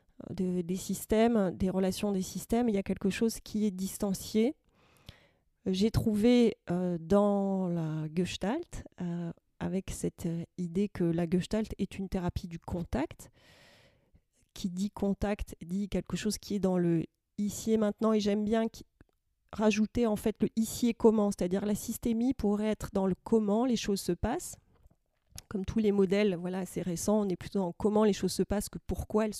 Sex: female